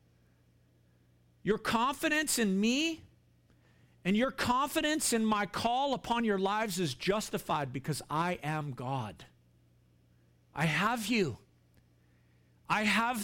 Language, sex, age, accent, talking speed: English, male, 50-69, American, 110 wpm